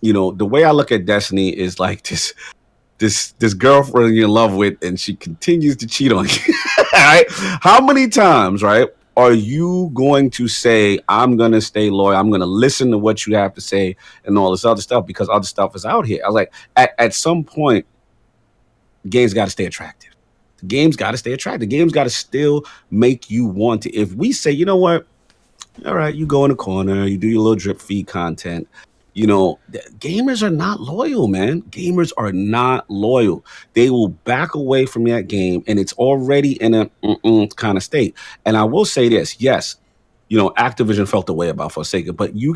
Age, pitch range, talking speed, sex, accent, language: 30-49, 100-145 Hz, 210 wpm, male, American, English